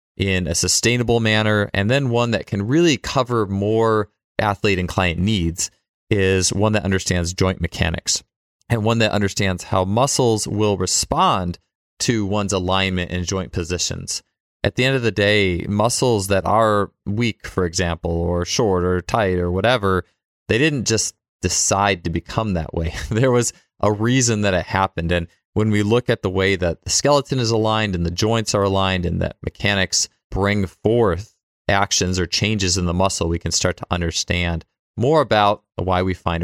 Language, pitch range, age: English, 90-110 Hz, 30-49